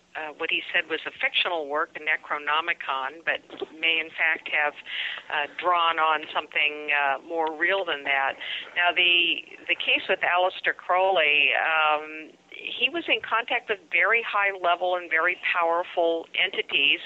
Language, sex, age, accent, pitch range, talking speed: English, female, 50-69, American, 155-190 Hz, 150 wpm